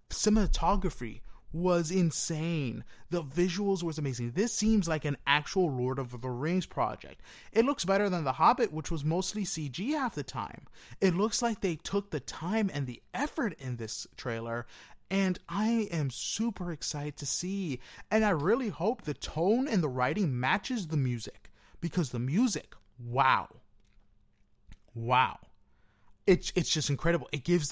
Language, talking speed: English, 160 wpm